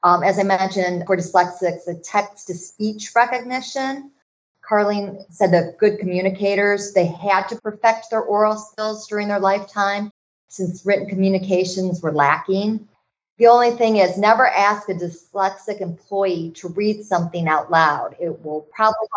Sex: female